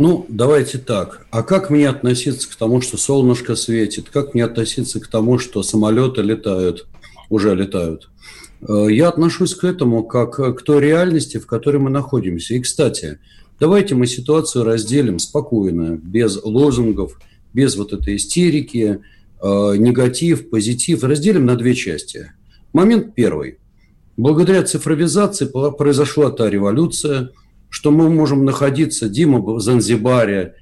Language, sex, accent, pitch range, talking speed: Russian, male, native, 110-150 Hz, 130 wpm